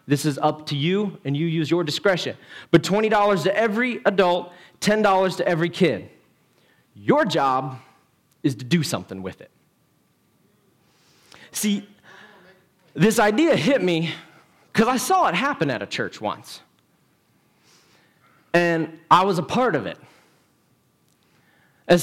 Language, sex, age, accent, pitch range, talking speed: English, male, 30-49, American, 155-200 Hz, 135 wpm